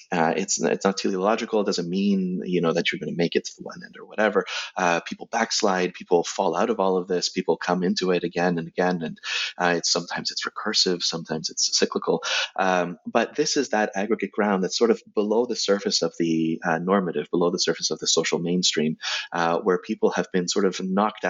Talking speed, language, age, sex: 225 wpm, English, 30-49, male